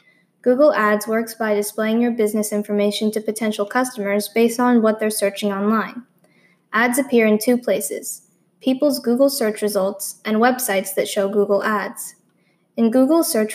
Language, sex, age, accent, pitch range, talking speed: English, female, 10-29, American, 205-245 Hz, 155 wpm